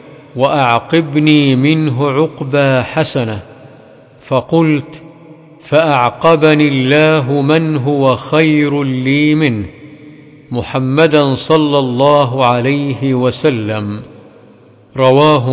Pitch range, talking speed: 130-155 Hz, 70 wpm